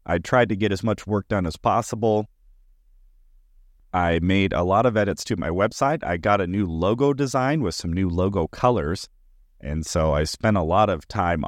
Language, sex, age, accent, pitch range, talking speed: English, male, 30-49, American, 80-105 Hz, 200 wpm